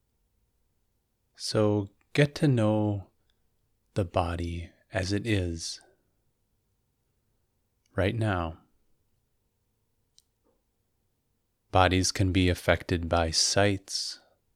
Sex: male